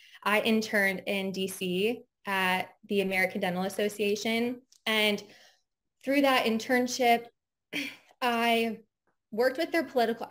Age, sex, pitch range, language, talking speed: 20-39, female, 190-235 Hz, English, 105 wpm